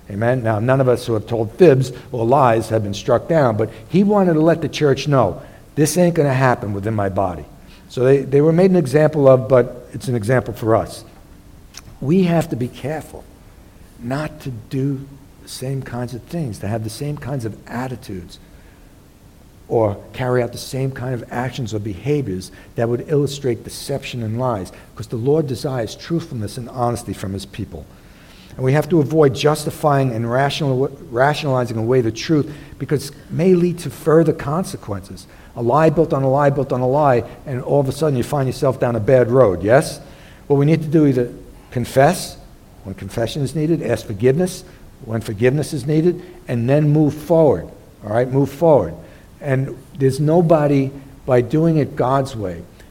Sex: male